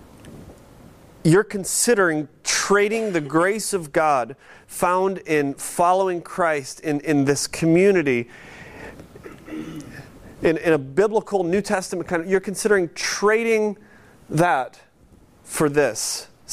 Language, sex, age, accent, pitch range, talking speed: English, male, 30-49, American, 145-200 Hz, 105 wpm